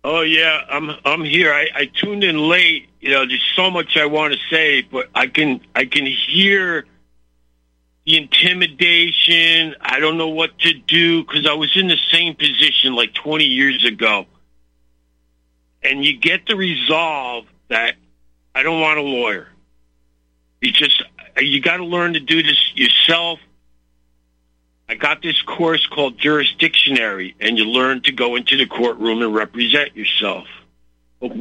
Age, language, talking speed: 50-69, English, 160 wpm